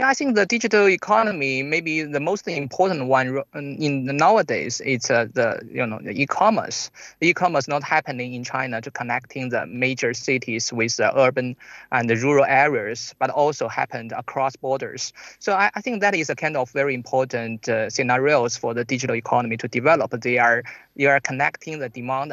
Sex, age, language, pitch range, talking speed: male, 20-39, English, 125-155 Hz, 185 wpm